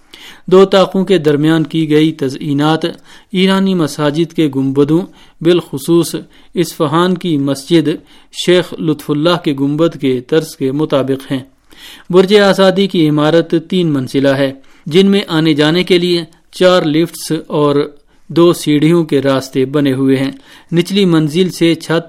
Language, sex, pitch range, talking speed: Urdu, male, 145-175 Hz, 140 wpm